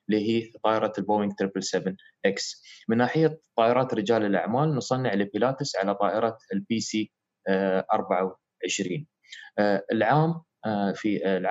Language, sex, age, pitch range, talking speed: Arabic, male, 20-39, 105-130 Hz, 100 wpm